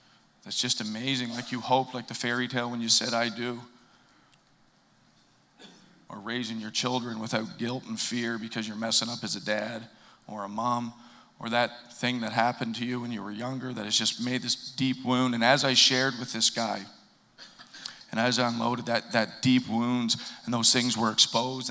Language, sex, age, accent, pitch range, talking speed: English, male, 40-59, American, 115-125 Hz, 195 wpm